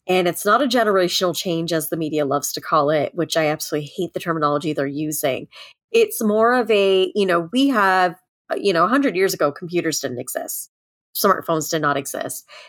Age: 30-49